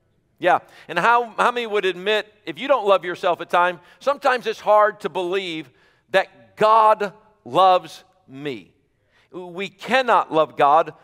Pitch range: 170-225 Hz